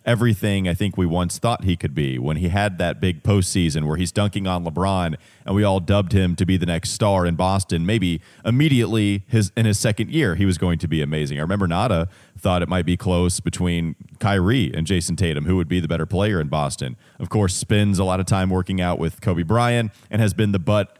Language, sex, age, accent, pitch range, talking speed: English, male, 30-49, American, 90-110 Hz, 235 wpm